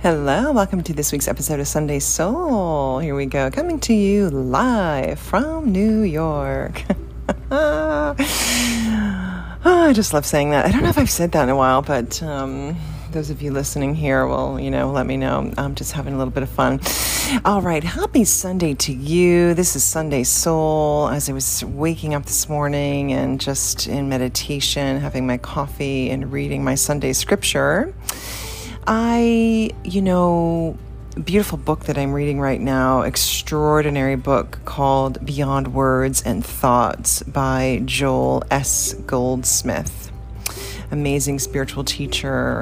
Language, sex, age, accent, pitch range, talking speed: English, female, 30-49, American, 130-160 Hz, 150 wpm